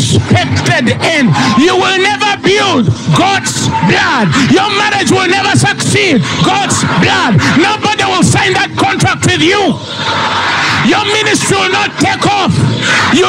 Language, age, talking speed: English, 50-69, 130 wpm